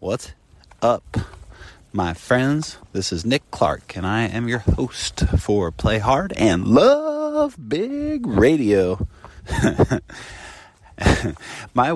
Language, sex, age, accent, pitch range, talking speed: English, male, 30-49, American, 95-135 Hz, 105 wpm